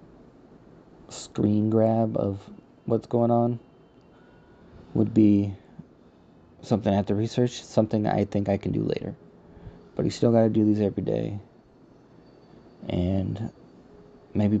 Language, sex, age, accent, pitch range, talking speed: English, male, 20-39, American, 95-110 Hz, 125 wpm